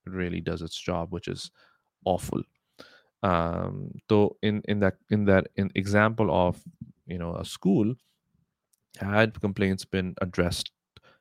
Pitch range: 90-115 Hz